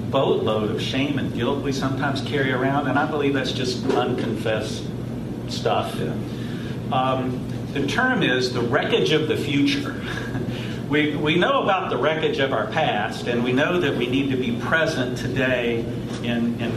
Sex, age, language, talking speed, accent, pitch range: male, 50-69, English, 165 wpm, American, 120-140 Hz